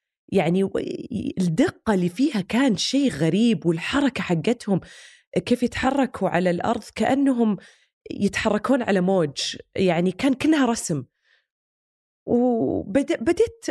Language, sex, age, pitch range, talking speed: Arabic, female, 20-39, 160-220 Hz, 95 wpm